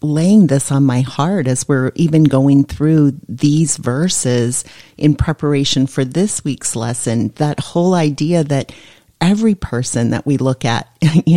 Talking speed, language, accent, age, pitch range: 155 wpm, English, American, 40-59, 135-170 Hz